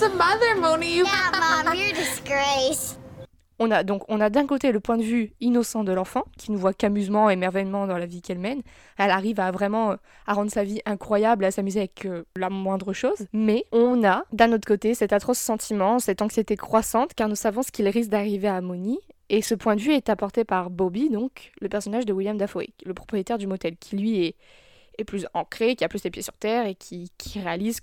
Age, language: 20-39, French